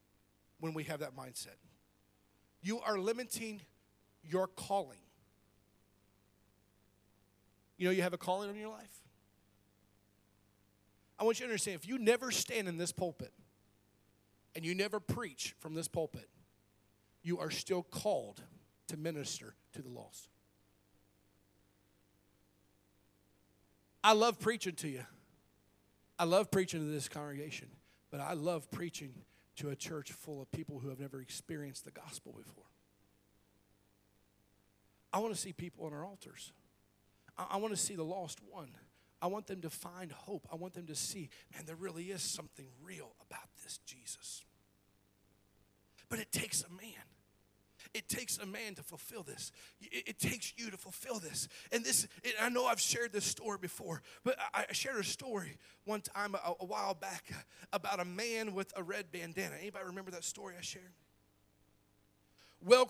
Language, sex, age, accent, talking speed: English, male, 40-59, American, 155 wpm